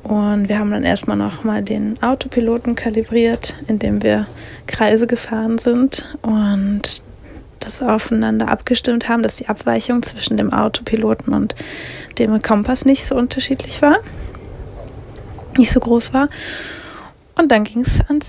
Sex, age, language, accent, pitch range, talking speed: female, 20-39, German, German, 195-240 Hz, 135 wpm